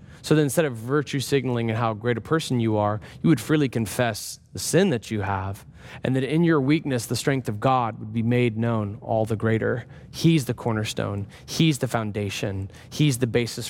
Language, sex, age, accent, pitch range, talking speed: English, male, 20-39, American, 125-165 Hz, 205 wpm